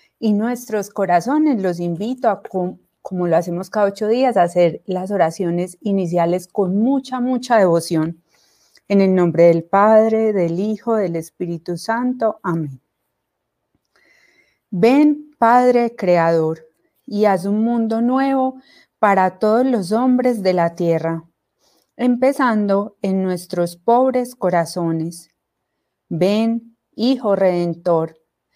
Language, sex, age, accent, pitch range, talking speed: Spanish, female, 30-49, Colombian, 175-225 Hz, 115 wpm